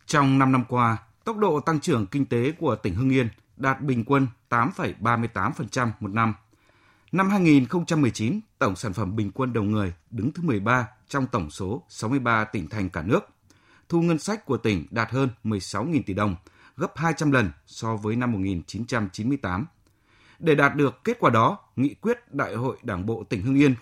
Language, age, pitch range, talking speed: Vietnamese, 20-39, 110-145 Hz, 180 wpm